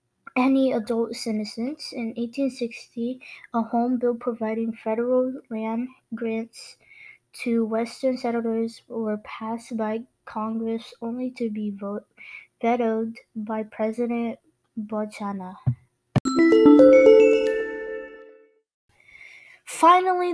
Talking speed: 85 wpm